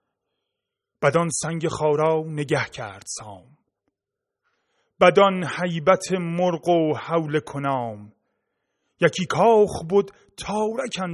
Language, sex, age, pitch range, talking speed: Persian, male, 30-49, 150-215 Hz, 85 wpm